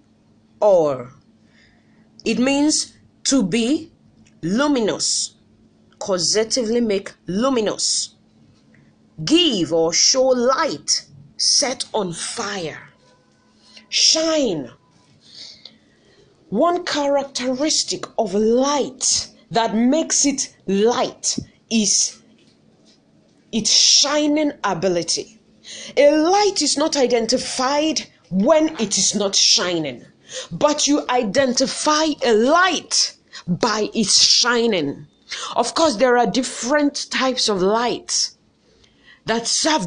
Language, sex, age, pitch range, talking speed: English, female, 30-49, 225-300 Hz, 85 wpm